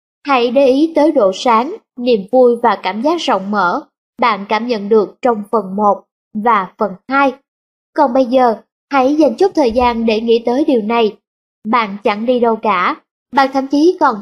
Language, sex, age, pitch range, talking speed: Vietnamese, female, 20-39, 220-275 Hz, 190 wpm